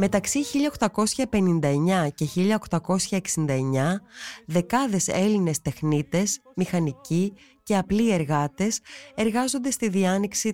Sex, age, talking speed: female, 20-39, 80 wpm